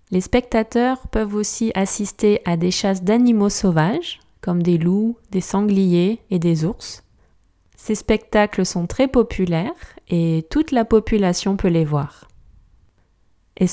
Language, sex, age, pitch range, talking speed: French, female, 20-39, 175-225 Hz, 135 wpm